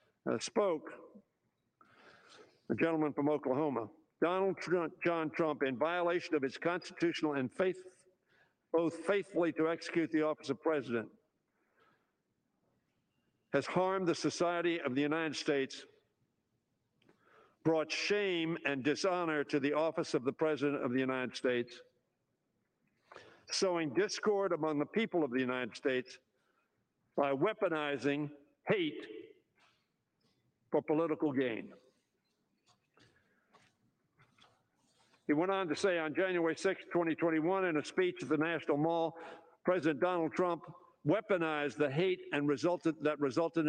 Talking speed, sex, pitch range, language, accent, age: 120 wpm, male, 150-180 Hz, English, American, 60-79